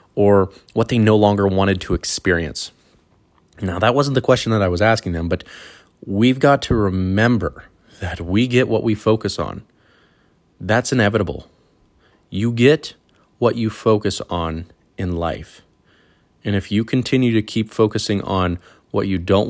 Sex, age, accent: male, 30-49, American